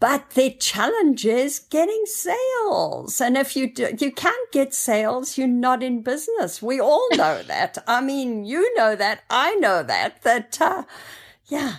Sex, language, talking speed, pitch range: female, English, 170 wpm, 170-265 Hz